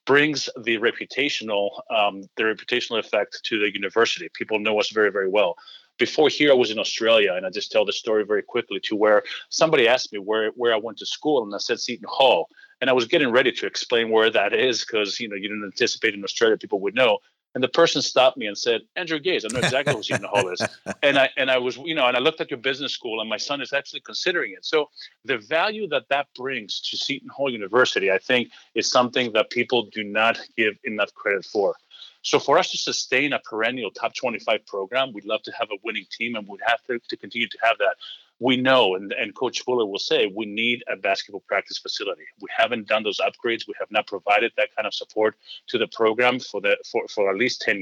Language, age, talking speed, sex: English, 40-59, 235 wpm, male